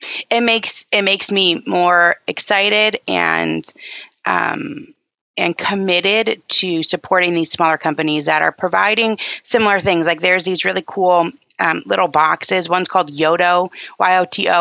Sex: female